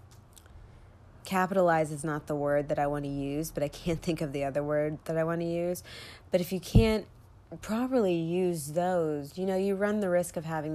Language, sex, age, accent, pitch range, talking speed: English, female, 20-39, American, 125-165 Hz, 210 wpm